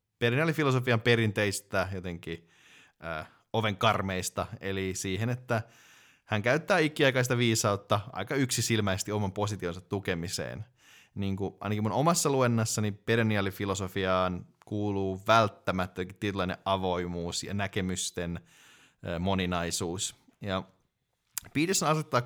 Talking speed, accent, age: 95 wpm, native, 20-39